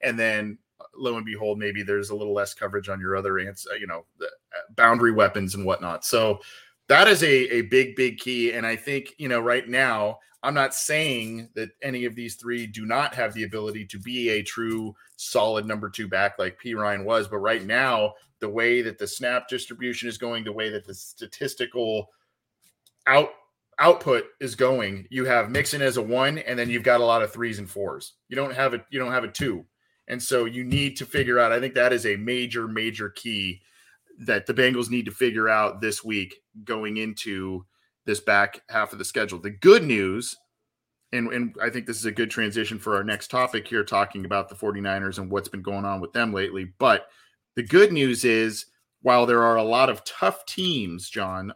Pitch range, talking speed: 105-125 Hz, 210 wpm